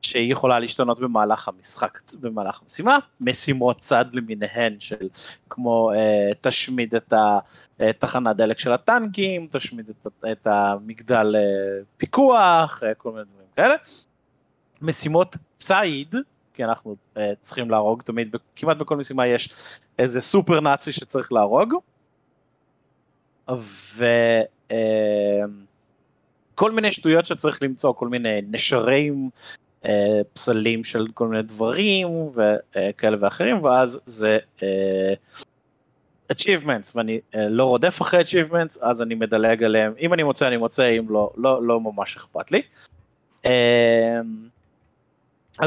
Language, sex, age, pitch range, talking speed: Hebrew, male, 30-49, 110-140 Hz, 115 wpm